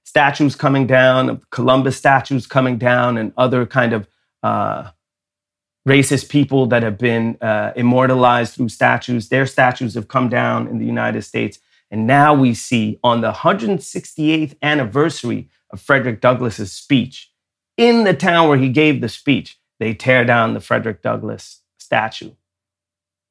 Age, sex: 30-49, male